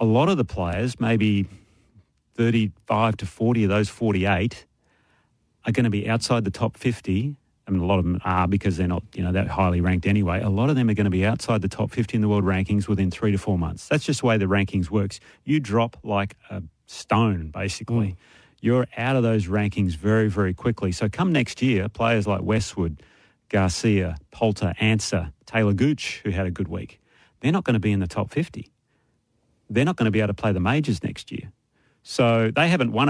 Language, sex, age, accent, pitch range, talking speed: English, male, 30-49, Australian, 100-115 Hz, 220 wpm